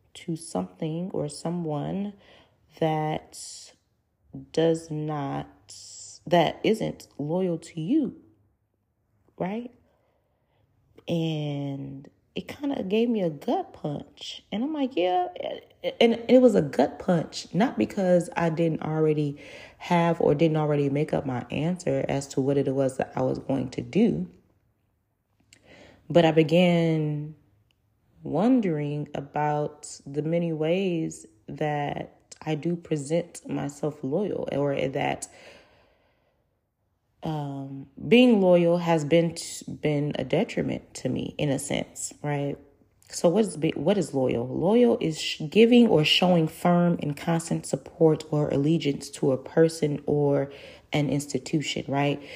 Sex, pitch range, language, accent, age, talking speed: female, 135-170 Hz, English, American, 30-49, 125 wpm